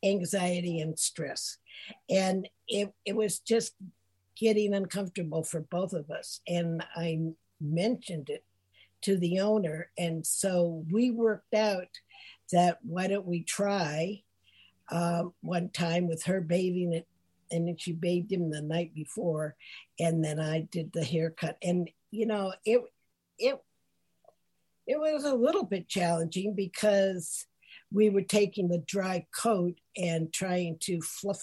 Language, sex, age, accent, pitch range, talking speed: English, female, 60-79, American, 165-205 Hz, 140 wpm